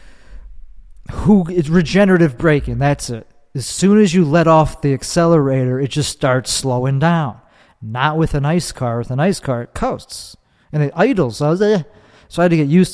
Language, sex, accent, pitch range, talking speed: English, male, American, 125-160 Hz, 200 wpm